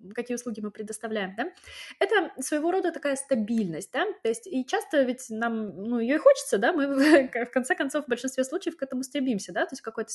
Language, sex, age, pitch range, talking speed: Russian, female, 20-39, 215-280 Hz, 220 wpm